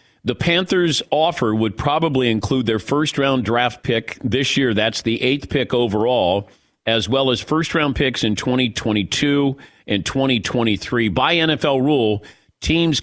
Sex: male